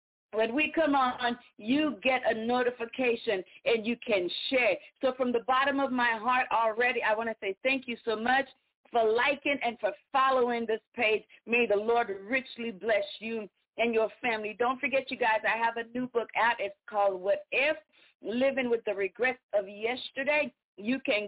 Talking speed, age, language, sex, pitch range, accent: 185 wpm, 40-59, English, female, 220-260 Hz, American